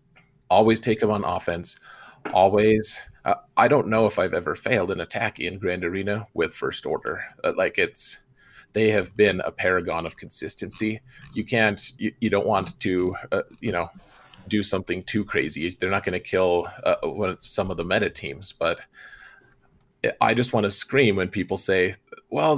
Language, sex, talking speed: English, male, 175 wpm